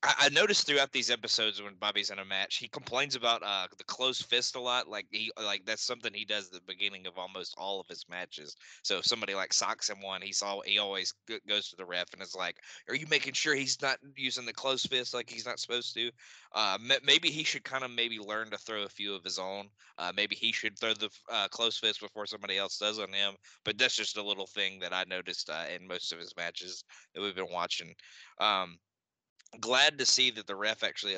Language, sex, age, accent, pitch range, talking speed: English, male, 20-39, American, 95-115 Hz, 240 wpm